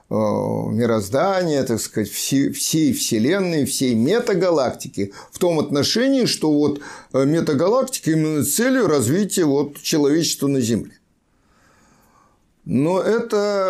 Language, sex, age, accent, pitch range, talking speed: Russian, male, 50-69, native, 140-190 Hz, 100 wpm